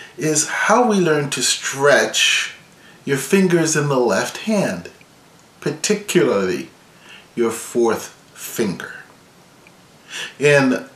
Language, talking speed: English, 95 wpm